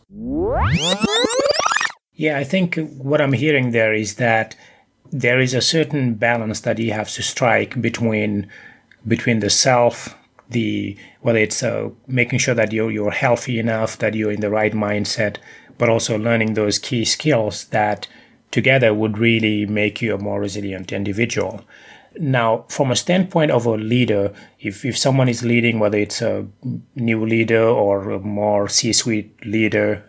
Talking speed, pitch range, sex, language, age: 155 wpm, 105-125 Hz, male, English, 30-49